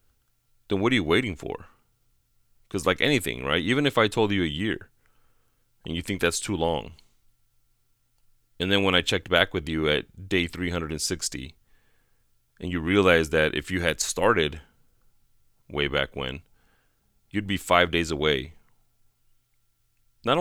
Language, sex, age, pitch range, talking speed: English, male, 30-49, 75-105 Hz, 150 wpm